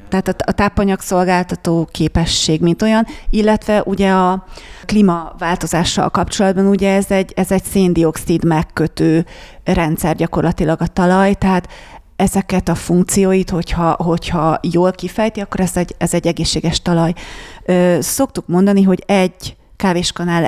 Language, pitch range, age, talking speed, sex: Hungarian, 165-190 Hz, 30-49, 125 wpm, female